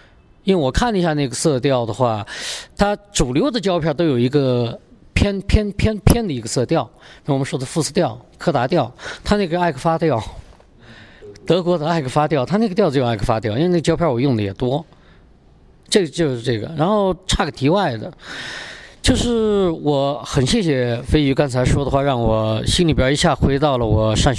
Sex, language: male, Chinese